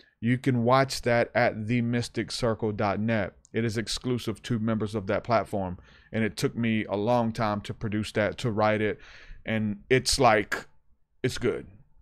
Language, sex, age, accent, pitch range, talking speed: English, male, 30-49, American, 100-120 Hz, 160 wpm